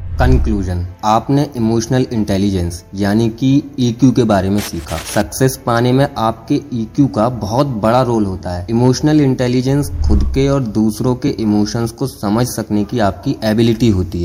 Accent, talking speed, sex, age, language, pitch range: native, 155 wpm, male, 20-39, Hindi, 105-140 Hz